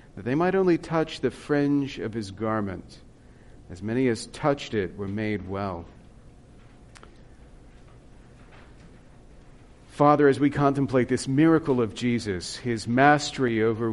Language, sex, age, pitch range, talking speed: English, male, 40-59, 110-140 Hz, 125 wpm